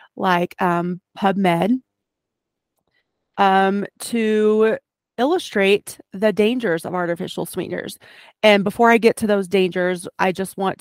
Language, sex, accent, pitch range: English, female, American, 180-215 Hz